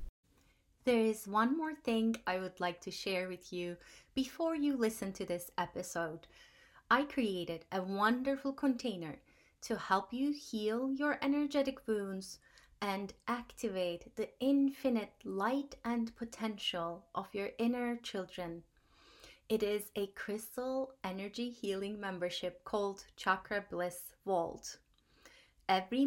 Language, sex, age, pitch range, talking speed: English, female, 20-39, 195-255 Hz, 120 wpm